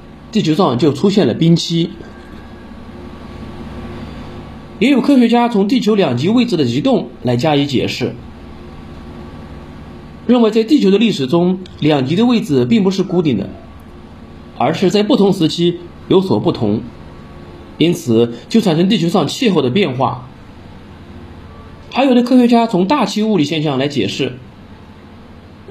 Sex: male